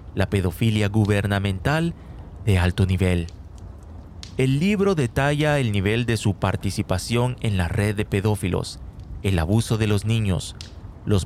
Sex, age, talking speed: male, 40-59, 135 wpm